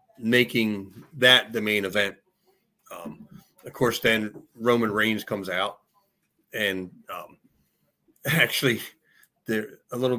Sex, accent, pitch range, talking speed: male, American, 105-125 Hz, 110 wpm